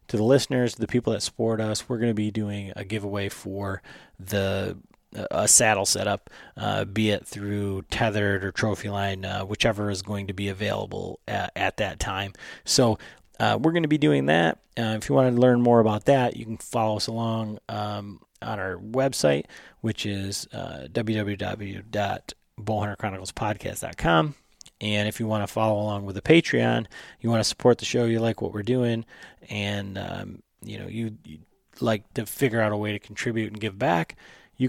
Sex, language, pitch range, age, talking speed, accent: male, English, 100-115 Hz, 30-49, 190 wpm, American